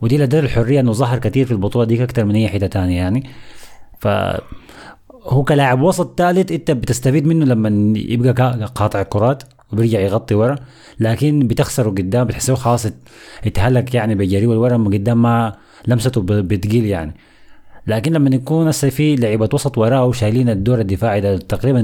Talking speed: 155 wpm